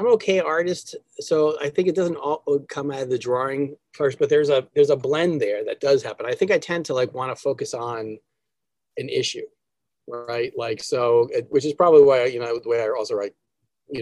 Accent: American